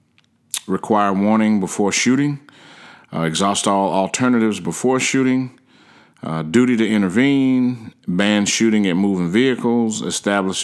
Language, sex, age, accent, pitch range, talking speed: English, male, 40-59, American, 95-110 Hz, 115 wpm